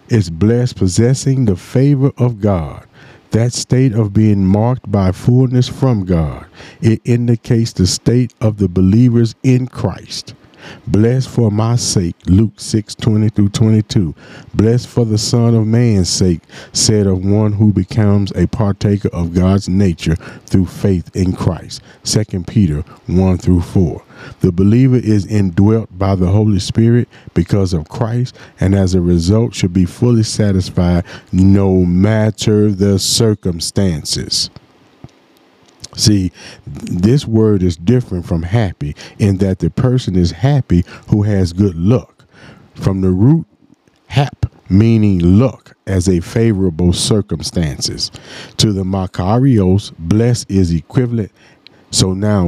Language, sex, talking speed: English, male, 135 wpm